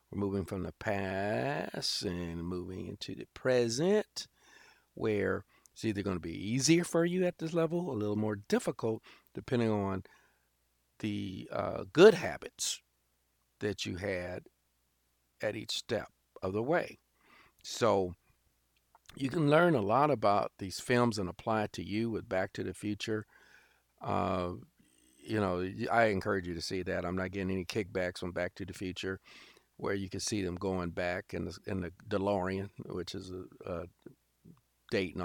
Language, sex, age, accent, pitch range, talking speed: English, male, 50-69, American, 90-110 Hz, 165 wpm